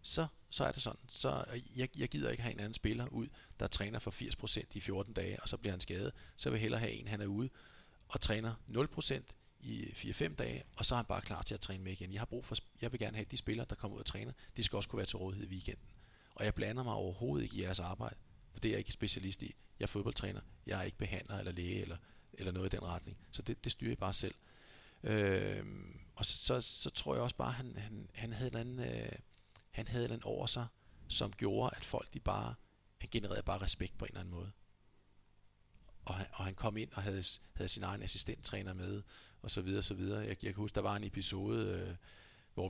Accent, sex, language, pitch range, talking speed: native, male, Danish, 95-110 Hz, 255 wpm